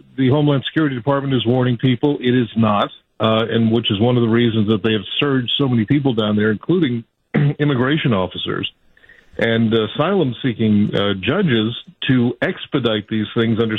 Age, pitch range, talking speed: 50-69, 115-135 Hz, 165 wpm